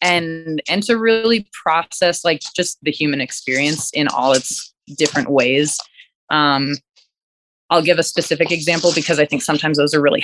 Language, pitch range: English, 145-175 Hz